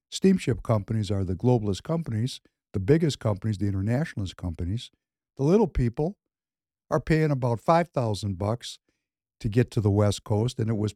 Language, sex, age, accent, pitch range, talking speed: English, male, 60-79, American, 105-135 Hz, 160 wpm